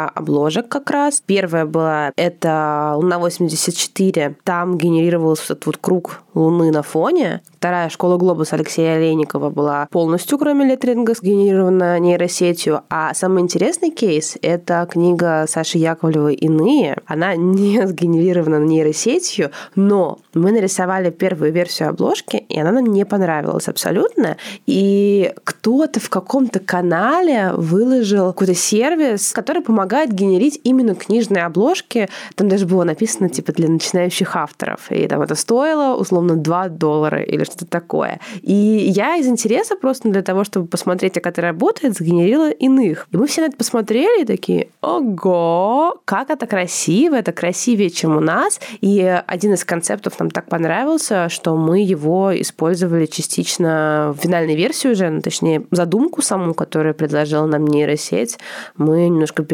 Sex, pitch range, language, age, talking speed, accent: female, 165-220 Hz, Russian, 20-39, 145 wpm, native